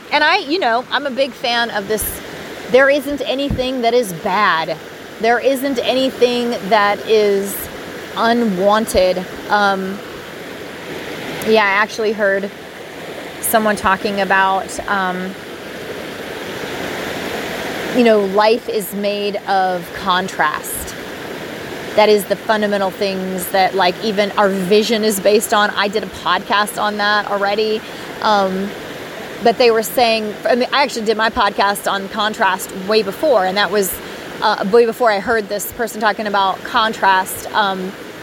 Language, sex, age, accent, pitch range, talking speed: English, female, 30-49, American, 195-230 Hz, 140 wpm